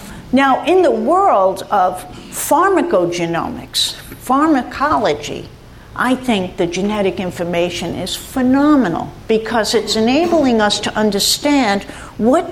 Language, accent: English, American